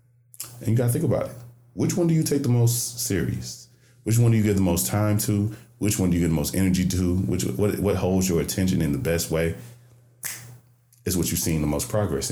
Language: English